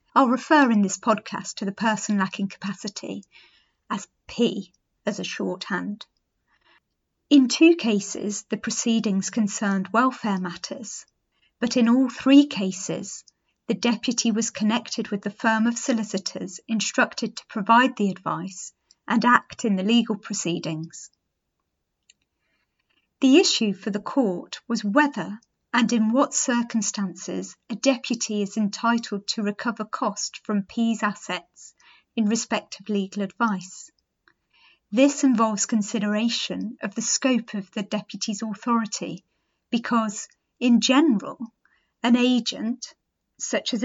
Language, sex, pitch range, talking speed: English, female, 205-245 Hz, 125 wpm